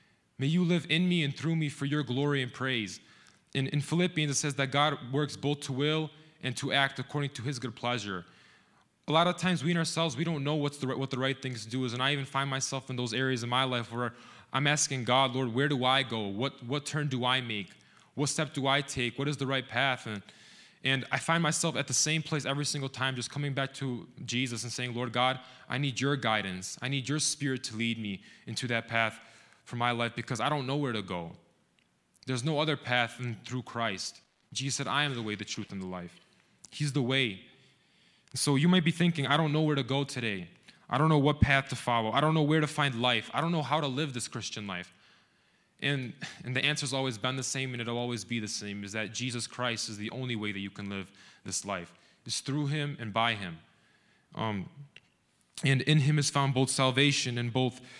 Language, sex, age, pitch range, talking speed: English, male, 20-39, 120-145 Hz, 240 wpm